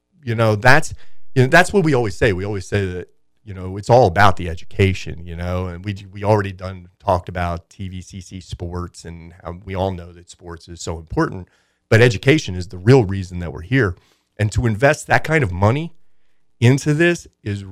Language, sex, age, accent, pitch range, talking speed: English, male, 40-59, American, 90-110 Hz, 205 wpm